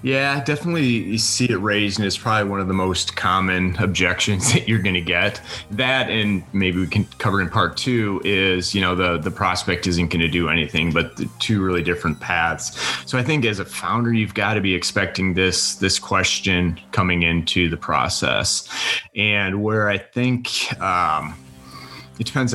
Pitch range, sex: 90-105 Hz, male